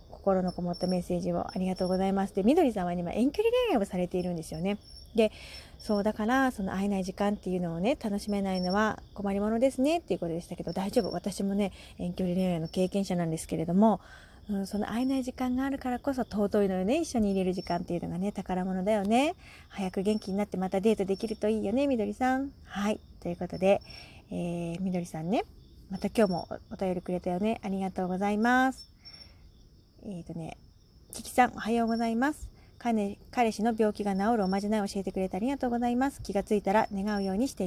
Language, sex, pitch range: Japanese, female, 190-245 Hz